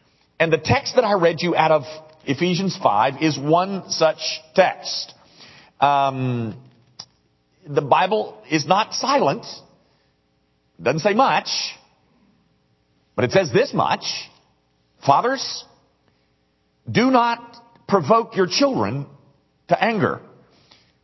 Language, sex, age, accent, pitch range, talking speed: English, male, 50-69, American, 125-190 Hz, 105 wpm